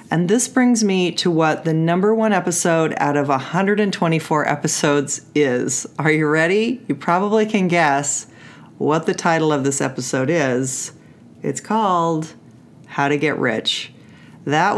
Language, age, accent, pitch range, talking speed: English, 40-59, American, 140-185 Hz, 145 wpm